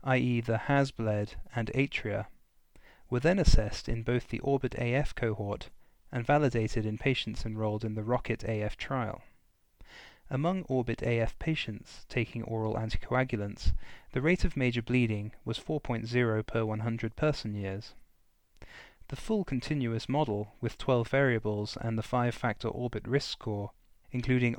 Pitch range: 110-130 Hz